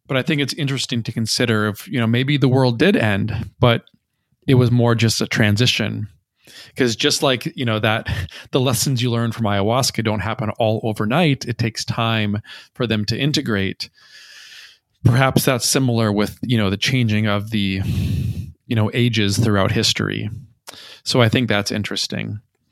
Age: 20-39